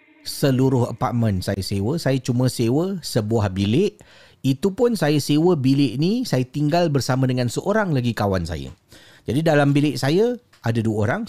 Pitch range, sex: 110-155 Hz, male